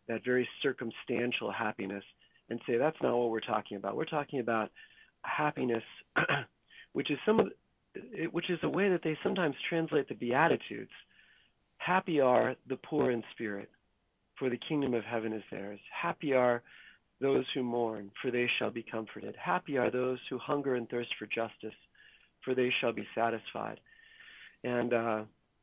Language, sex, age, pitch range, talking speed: English, male, 40-59, 110-135 Hz, 150 wpm